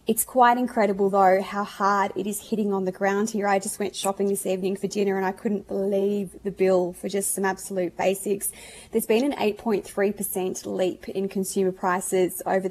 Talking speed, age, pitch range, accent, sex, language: 195 wpm, 20-39, 195-215 Hz, Australian, female, English